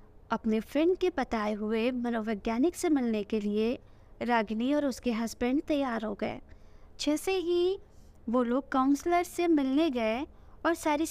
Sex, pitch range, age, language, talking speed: female, 235-335 Hz, 20-39, Hindi, 145 wpm